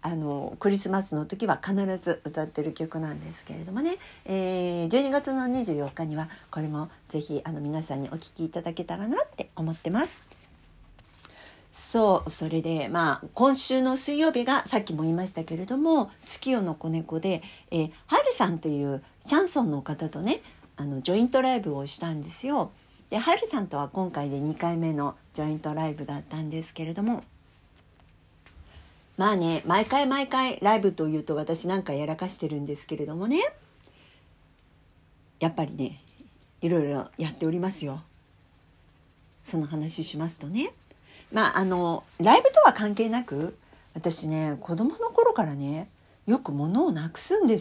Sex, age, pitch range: female, 60-79, 150-220 Hz